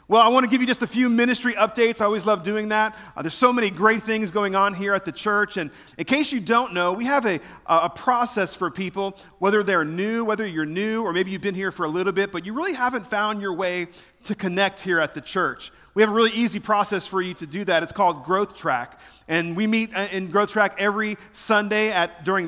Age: 40-59